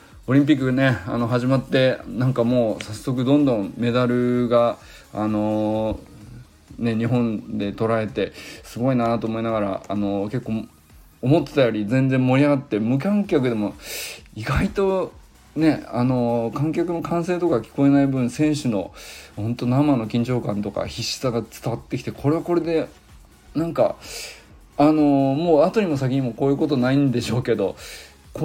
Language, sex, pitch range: Japanese, male, 105-135 Hz